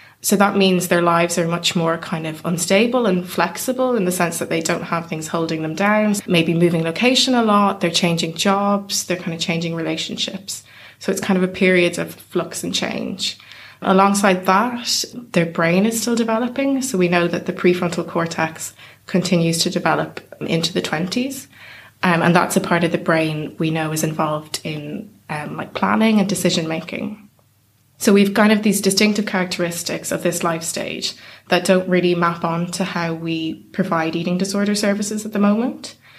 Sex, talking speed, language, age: female, 185 wpm, English, 20-39